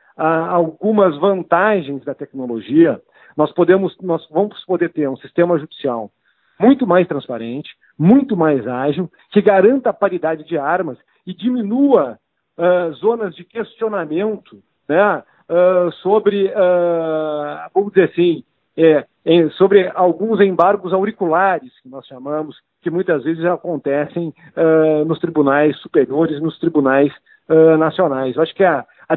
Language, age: Portuguese, 50-69